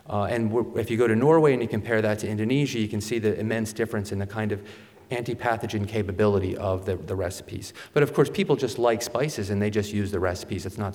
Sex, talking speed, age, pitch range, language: male, 245 wpm, 40-59, 105-130 Hz, English